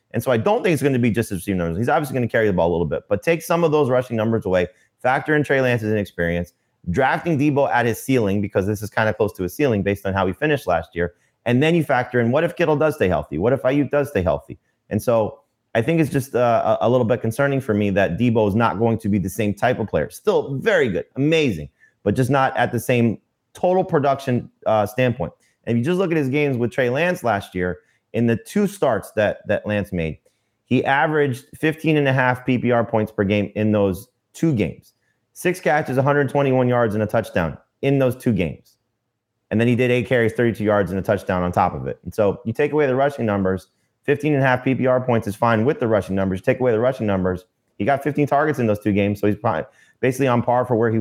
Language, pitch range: English, 105-140 Hz